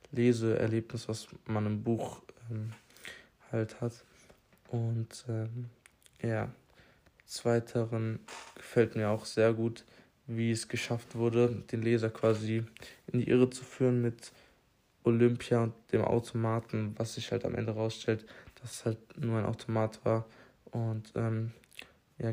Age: 20-39